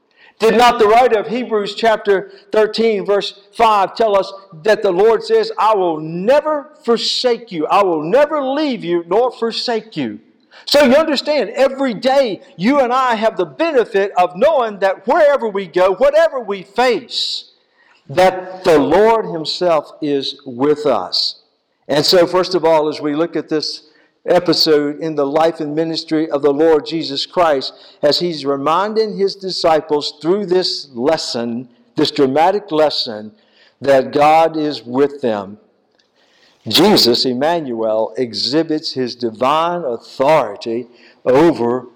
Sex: male